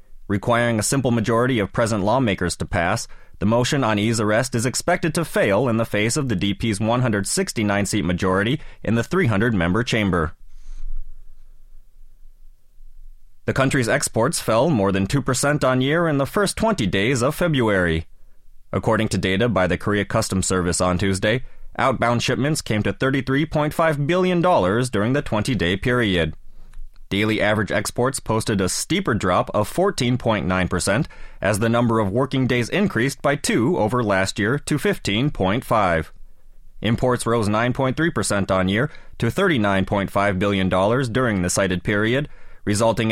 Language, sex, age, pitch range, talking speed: English, male, 30-49, 100-135 Hz, 140 wpm